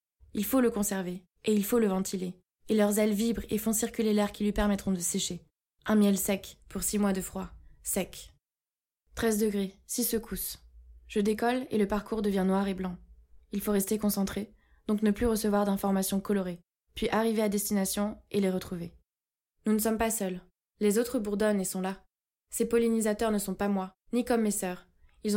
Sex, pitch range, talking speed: female, 190-215 Hz, 195 wpm